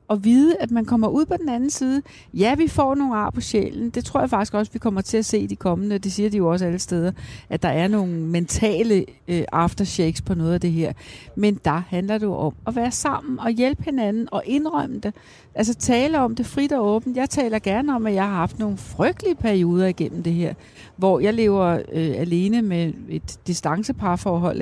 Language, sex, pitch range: Danish, female, 170-240 Hz